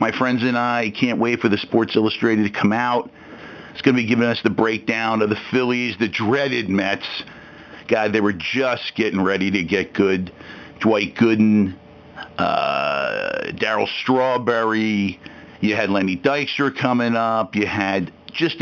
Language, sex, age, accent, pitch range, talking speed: English, male, 50-69, American, 105-140 Hz, 160 wpm